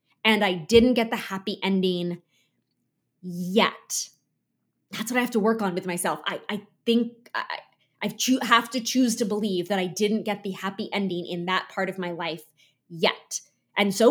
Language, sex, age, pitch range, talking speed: English, female, 20-39, 195-265 Hz, 185 wpm